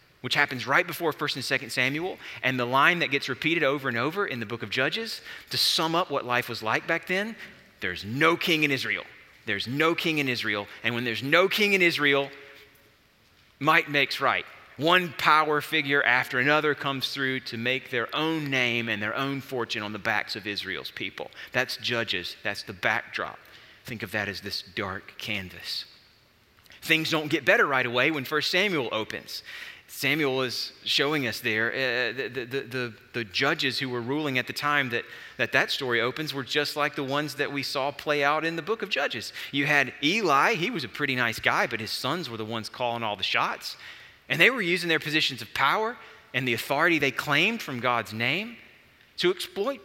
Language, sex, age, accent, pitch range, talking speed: English, male, 30-49, American, 120-160 Hz, 205 wpm